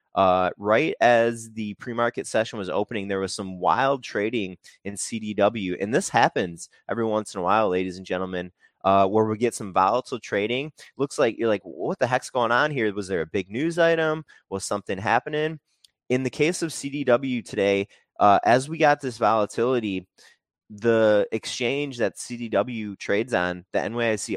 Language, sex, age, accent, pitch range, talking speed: English, male, 20-39, American, 100-130 Hz, 175 wpm